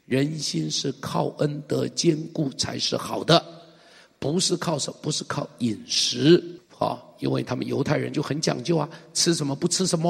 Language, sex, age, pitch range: Chinese, male, 50-69, 135-165 Hz